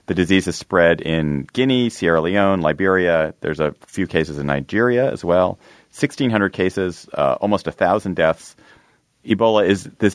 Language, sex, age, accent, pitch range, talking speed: English, male, 30-49, American, 80-100 Hz, 155 wpm